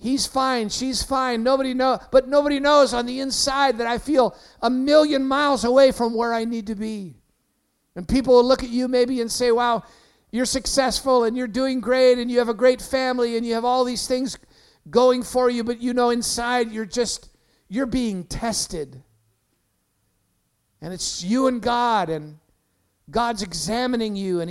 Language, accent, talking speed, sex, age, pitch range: English, American, 185 wpm, male, 50-69, 175-245 Hz